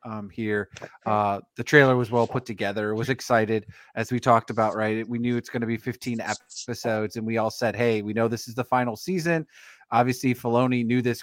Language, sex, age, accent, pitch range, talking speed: English, male, 30-49, American, 115-135 Hz, 225 wpm